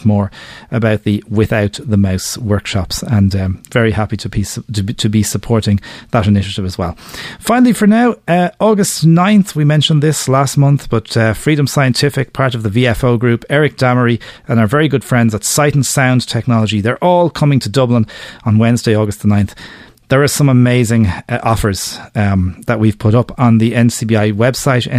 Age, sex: 30-49, male